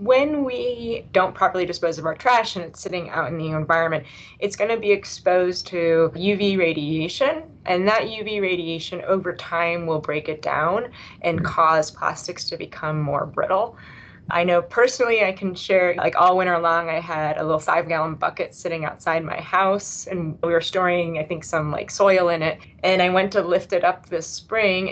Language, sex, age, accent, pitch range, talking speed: English, female, 20-39, American, 165-195 Hz, 195 wpm